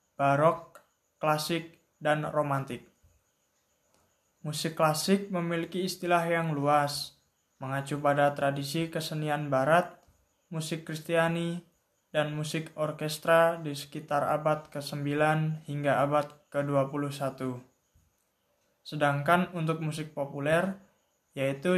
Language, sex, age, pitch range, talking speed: Indonesian, male, 20-39, 140-160 Hz, 90 wpm